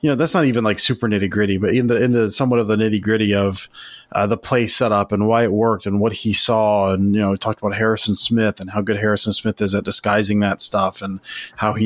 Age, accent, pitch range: 30-49, American, 105-120 Hz